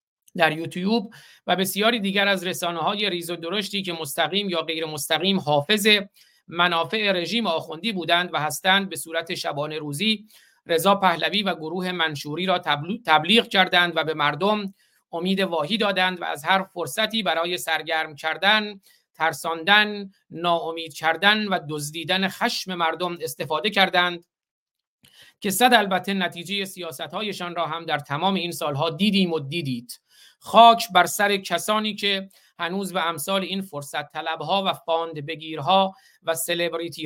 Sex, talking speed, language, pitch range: male, 140 wpm, Persian, 165-200 Hz